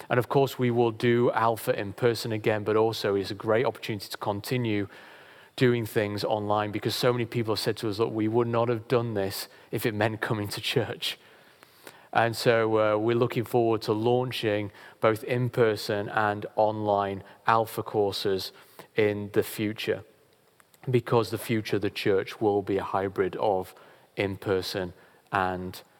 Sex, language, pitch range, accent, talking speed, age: male, English, 105-120 Hz, British, 165 wpm, 30-49